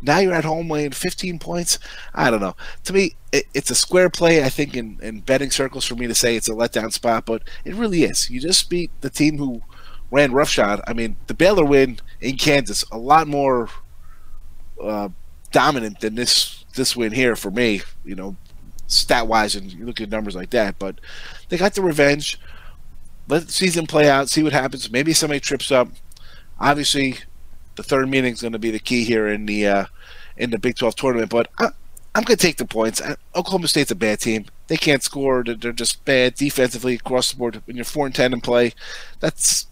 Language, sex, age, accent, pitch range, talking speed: English, male, 30-49, American, 110-150 Hz, 210 wpm